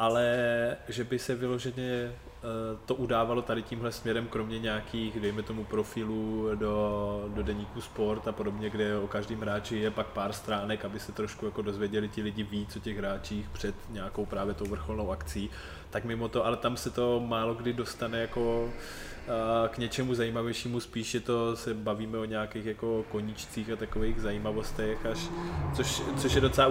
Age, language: 20-39, Czech